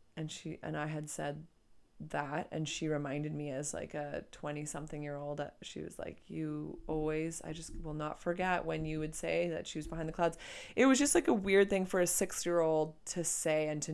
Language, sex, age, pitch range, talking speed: English, female, 20-39, 155-180 Hz, 235 wpm